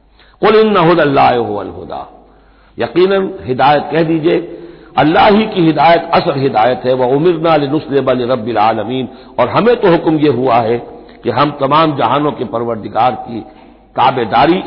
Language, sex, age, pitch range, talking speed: Hindi, male, 60-79, 125-170 Hz, 120 wpm